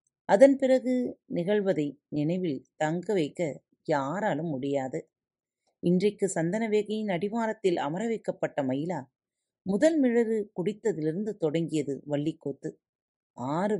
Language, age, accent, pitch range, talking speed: Tamil, 30-49, native, 145-210 Hz, 85 wpm